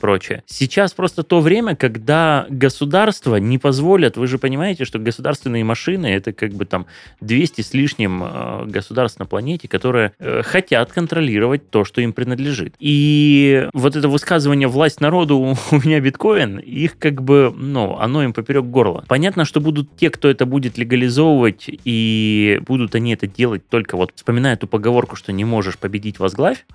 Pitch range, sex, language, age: 115-155 Hz, male, Russian, 20-39